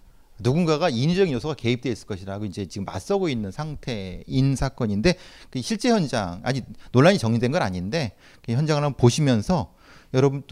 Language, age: Korean, 40-59